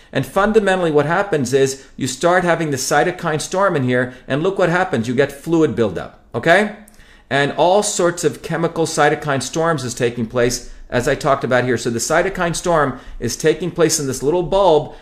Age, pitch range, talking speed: 40-59, 140-180 Hz, 190 wpm